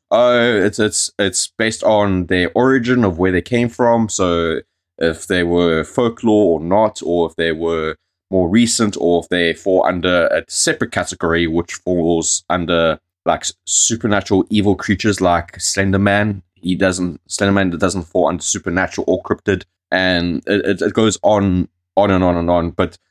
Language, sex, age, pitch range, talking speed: English, male, 20-39, 85-100 Hz, 175 wpm